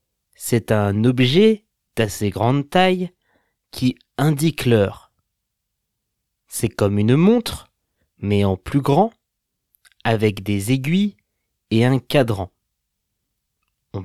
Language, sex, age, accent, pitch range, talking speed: French, male, 30-49, French, 105-155 Hz, 100 wpm